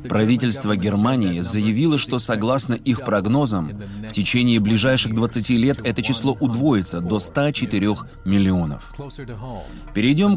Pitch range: 115-150 Hz